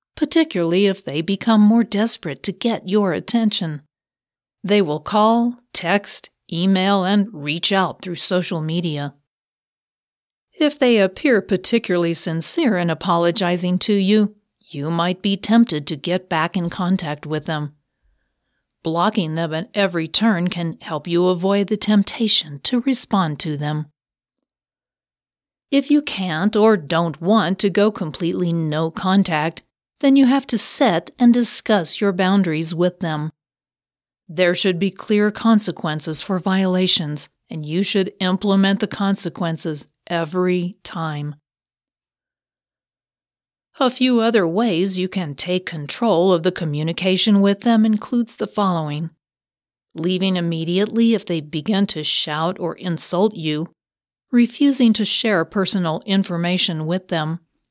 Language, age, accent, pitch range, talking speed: English, 40-59, American, 160-210 Hz, 130 wpm